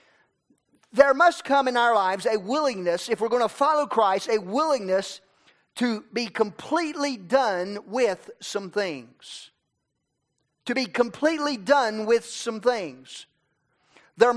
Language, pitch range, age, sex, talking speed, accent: English, 165-245 Hz, 40-59, male, 130 wpm, American